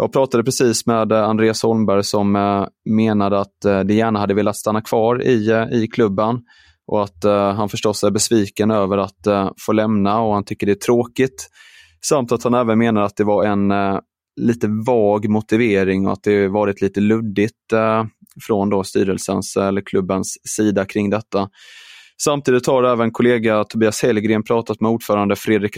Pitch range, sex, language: 100-115 Hz, male, Swedish